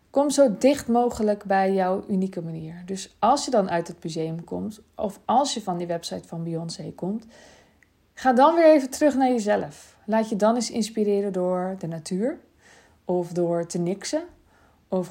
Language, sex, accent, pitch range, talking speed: Dutch, female, Dutch, 175-215 Hz, 180 wpm